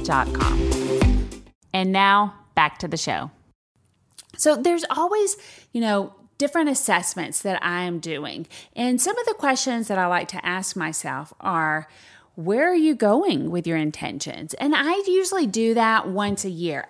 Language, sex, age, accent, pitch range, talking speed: English, female, 30-49, American, 190-275 Hz, 155 wpm